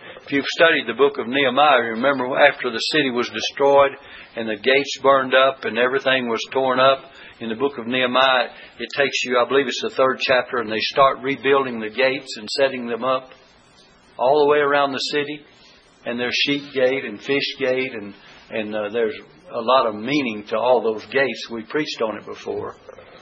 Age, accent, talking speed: 60-79, American, 200 wpm